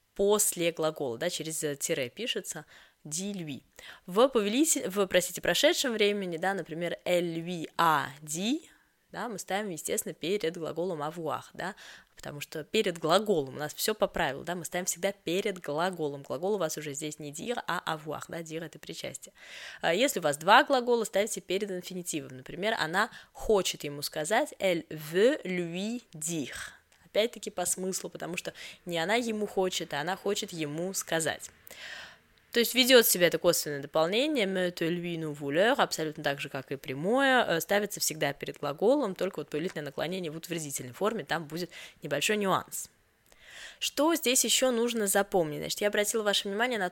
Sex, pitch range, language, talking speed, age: female, 155-205 Hz, Russian, 160 wpm, 20-39